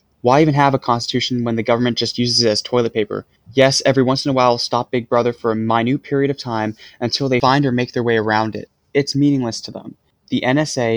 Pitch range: 115-130 Hz